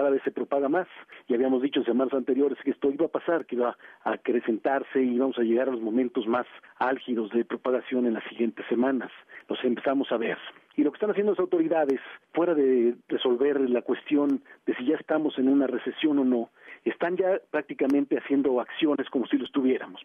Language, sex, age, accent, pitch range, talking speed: Spanish, male, 50-69, Mexican, 125-150 Hz, 205 wpm